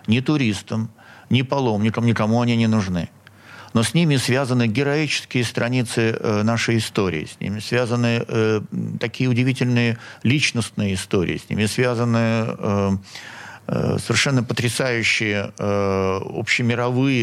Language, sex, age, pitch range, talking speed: Russian, male, 50-69, 100-120 Hz, 115 wpm